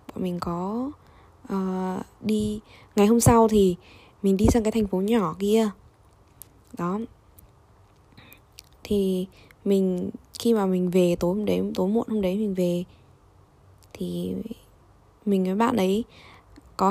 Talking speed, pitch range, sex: 135 wpm, 180-220 Hz, female